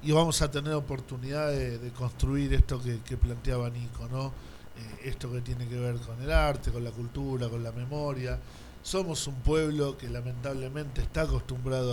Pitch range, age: 120-140 Hz, 50-69